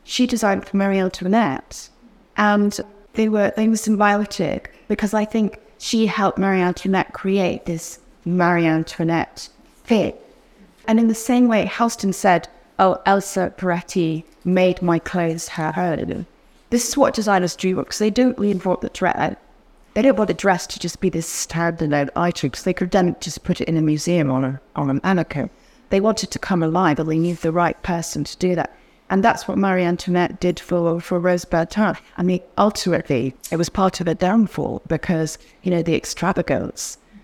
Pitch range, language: 170-210 Hz, English